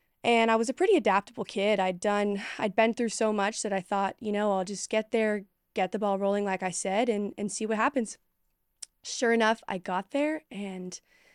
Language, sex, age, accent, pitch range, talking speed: English, female, 20-39, American, 190-220 Hz, 215 wpm